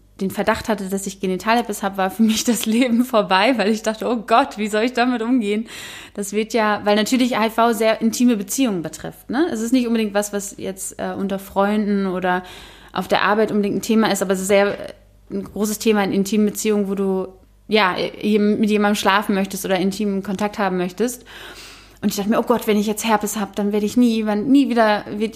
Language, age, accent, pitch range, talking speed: German, 20-39, German, 185-215 Hz, 220 wpm